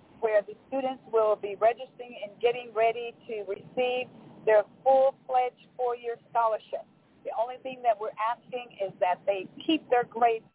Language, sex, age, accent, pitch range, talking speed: English, female, 50-69, American, 205-250 Hz, 155 wpm